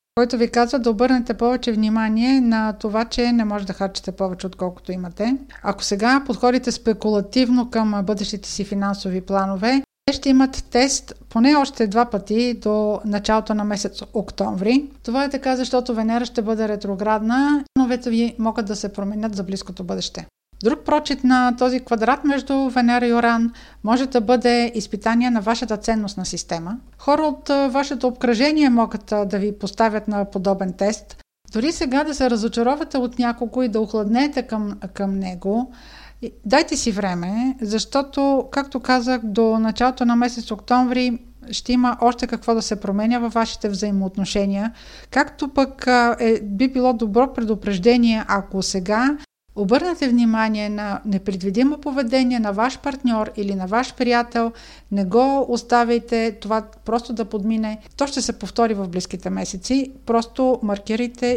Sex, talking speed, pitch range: female, 150 wpm, 210-250 Hz